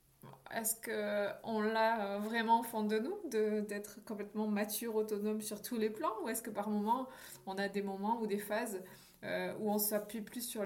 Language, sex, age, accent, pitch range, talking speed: French, female, 20-39, French, 200-255 Hz, 195 wpm